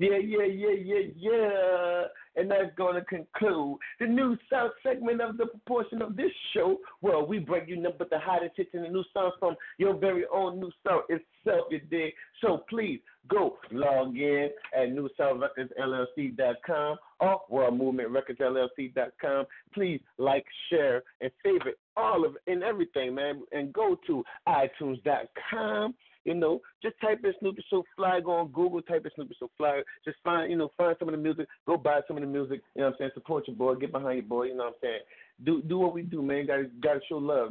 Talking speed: 200 wpm